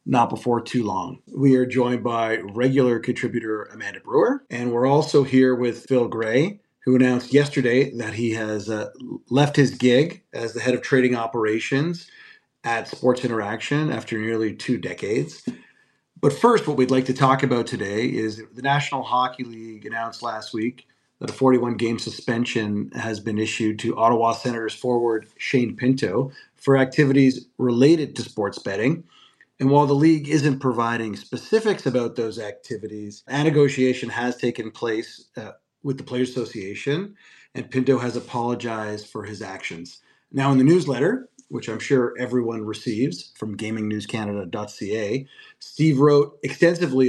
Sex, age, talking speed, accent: male, 30-49, 150 wpm, American